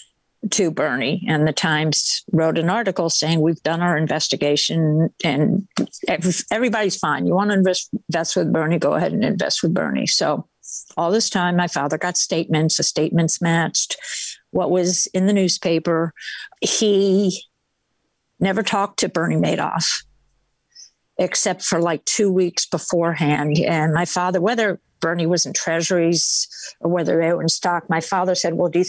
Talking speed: 160 wpm